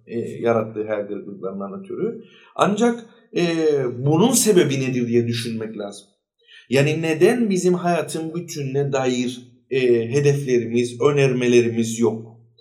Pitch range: 125-180 Hz